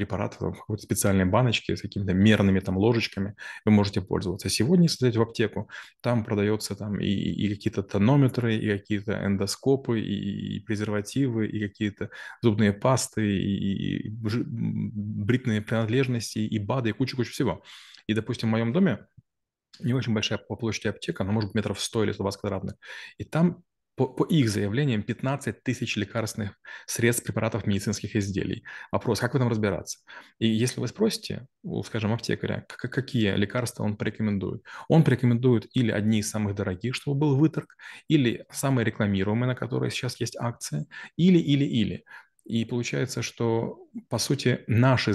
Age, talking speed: 20-39, 150 wpm